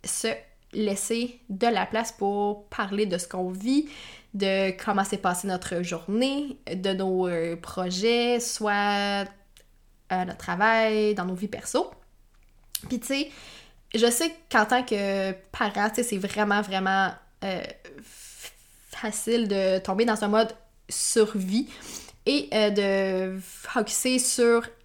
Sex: female